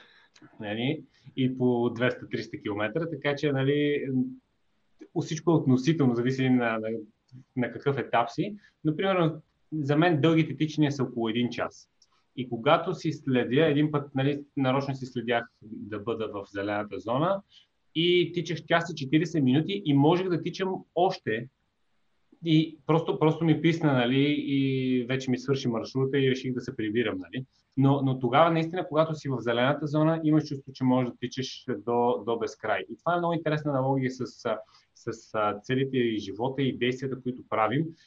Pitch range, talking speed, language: 125-155 Hz, 160 wpm, Bulgarian